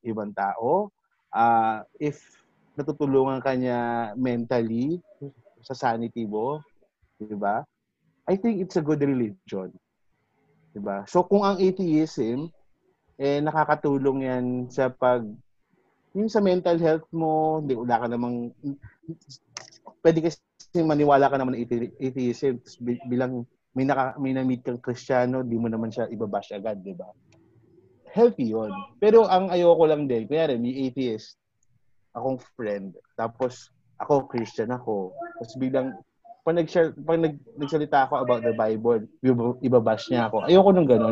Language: Filipino